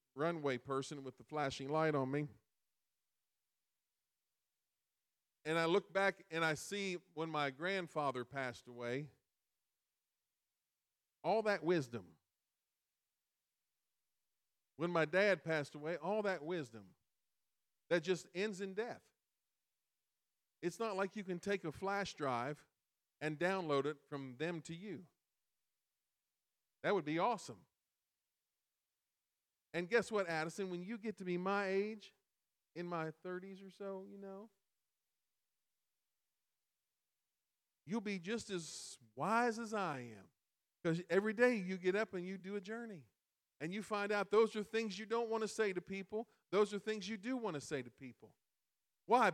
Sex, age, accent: male, 50-69, American